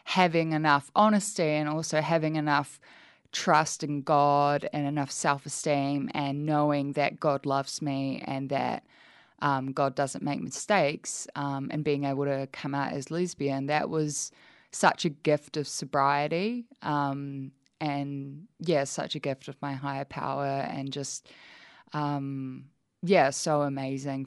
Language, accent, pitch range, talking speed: English, Australian, 140-155 Hz, 145 wpm